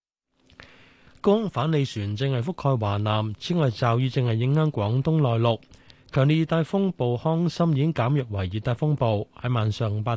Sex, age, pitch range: male, 20-39, 110-150 Hz